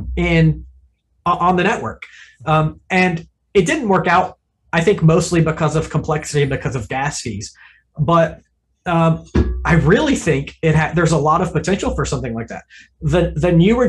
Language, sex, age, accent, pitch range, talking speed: English, male, 30-49, American, 130-170 Hz, 175 wpm